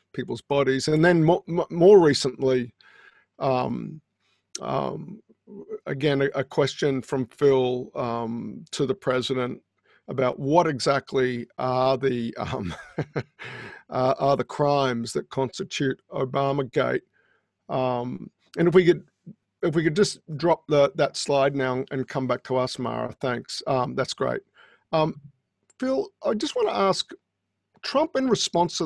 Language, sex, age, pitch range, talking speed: English, male, 50-69, 130-180 Hz, 140 wpm